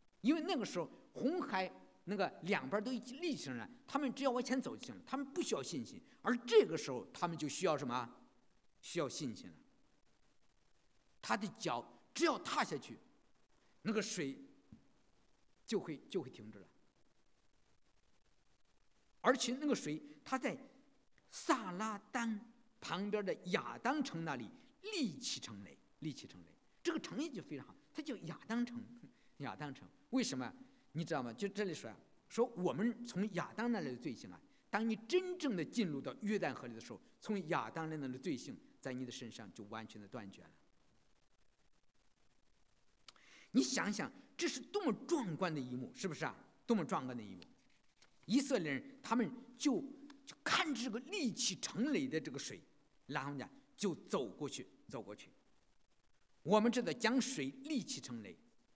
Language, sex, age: English, male, 50-69